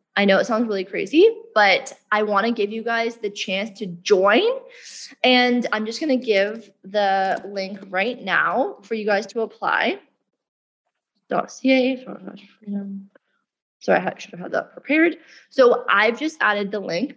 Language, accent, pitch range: English, American, 200-260 Hz